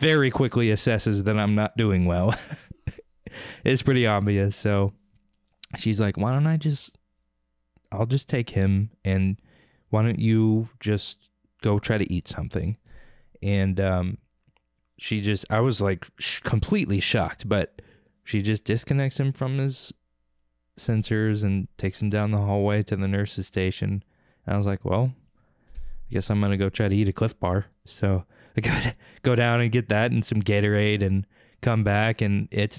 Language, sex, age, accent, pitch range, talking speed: English, male, 20-39, American, 100-115 Hz, 165 wpm